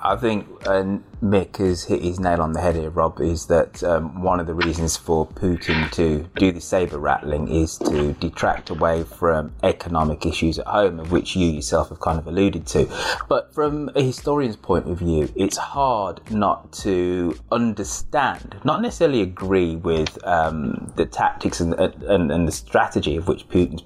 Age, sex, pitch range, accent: 20-39, male, 80-105 Hz, British